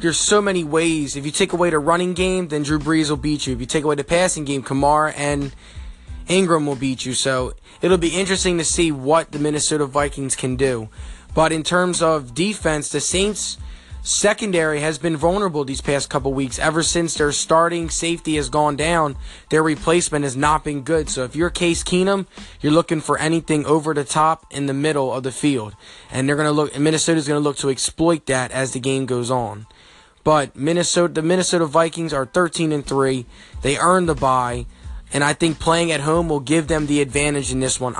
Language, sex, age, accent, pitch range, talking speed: English, male, 20-39, American, 135-165 Hz, 210 wpm